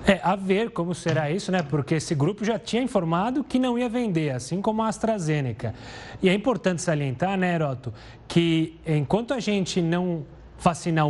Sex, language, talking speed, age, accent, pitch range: male, Portuguese, 180 wpm, 30-49, Brazilian, 160-205 Hz